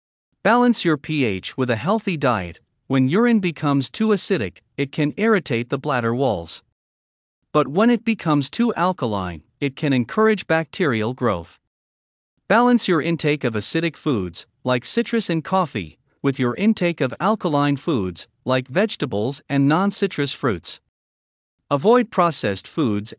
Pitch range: 110-180 Hz